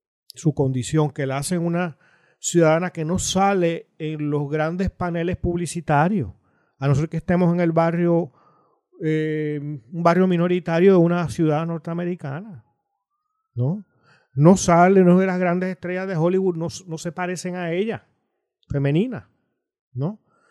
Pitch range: 135-175 Hz